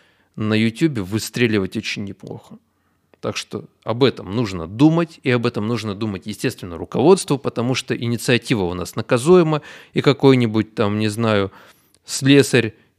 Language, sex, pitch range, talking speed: Russian, male, 110-150 Hz, 140 wpm